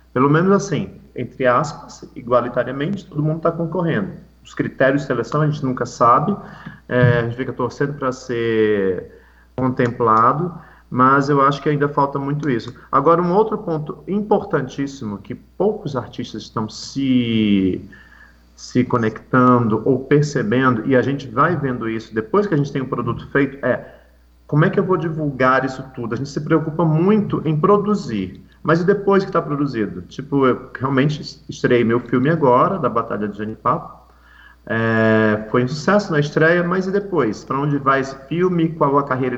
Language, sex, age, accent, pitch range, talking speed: Portuguese, male, 40-59, Brazilian, 125-160 Hz, 170 wpm